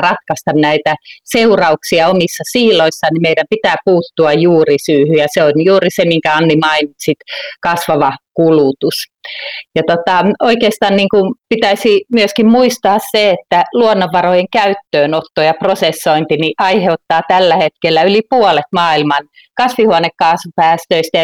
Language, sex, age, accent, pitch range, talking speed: Finnish, female, 30-49, native, 155-195 Hz, 125 wpm